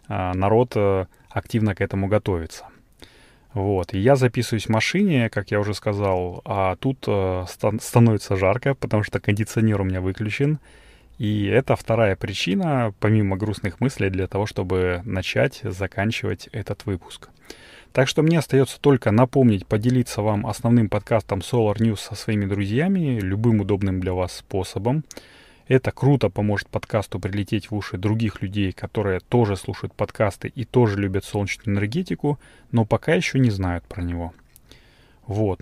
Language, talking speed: Russian, 145 wpm